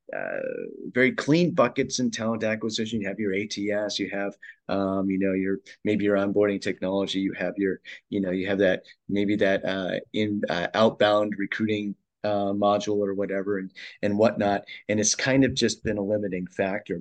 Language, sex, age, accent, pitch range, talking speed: English, male, 30-49, American, 100-115 Hz, 185 wpm